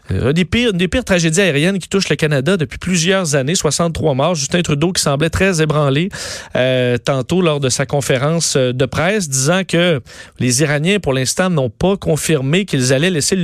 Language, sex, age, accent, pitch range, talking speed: French, male, 30-49, Canadian, 140-180 Hz, 190 wpm